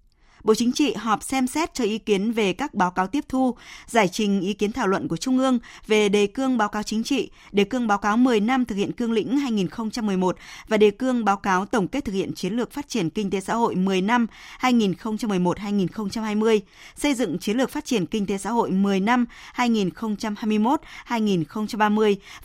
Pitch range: 190-235 Hz